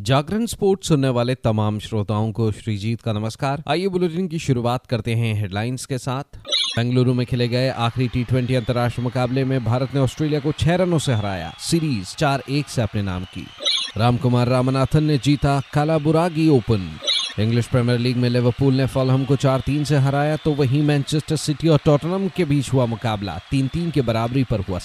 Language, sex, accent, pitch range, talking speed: Hindi, male, native, 110-140 Hz, 185 wpm